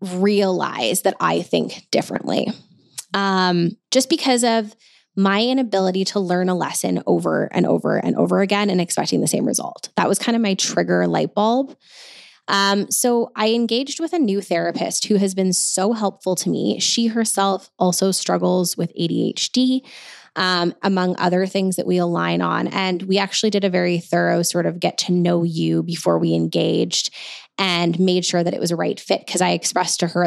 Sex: female